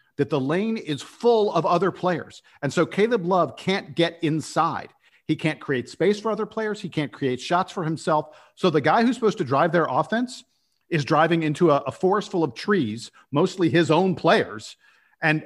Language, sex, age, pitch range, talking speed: English, male, 50-69, 135-185 Hz, 200 wpm